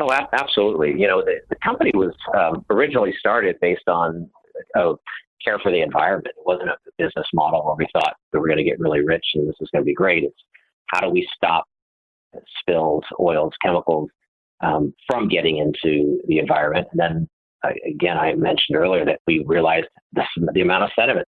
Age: 50-69